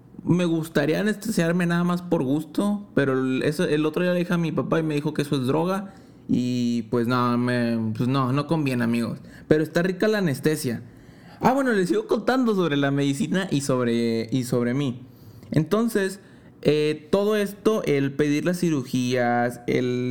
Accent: Mexican